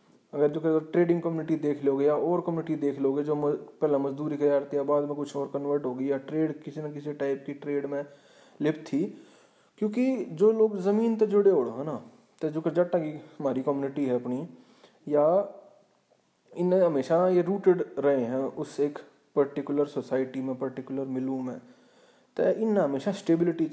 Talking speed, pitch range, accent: 180 wpm, 140-175 Hz, native